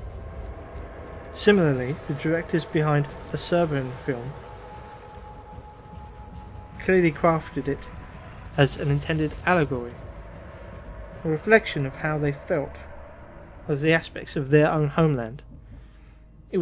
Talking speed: 100 wpm